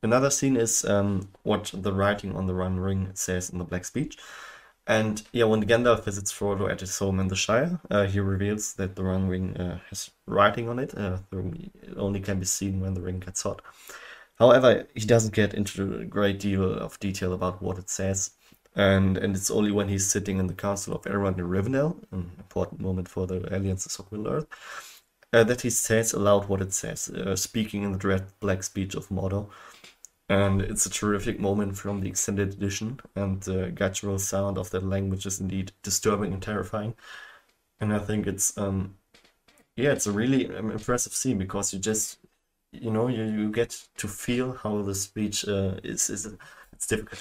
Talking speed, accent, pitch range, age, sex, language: 200 wpm, German, 95-105 Hz, 20-39, male, German